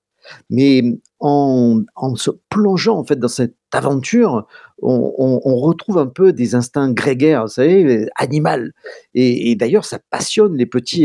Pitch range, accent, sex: 120-160 Hz, French, male